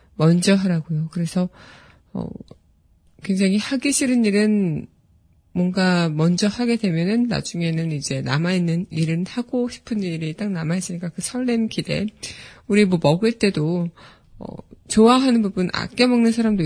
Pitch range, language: 170-215 Hz, Korean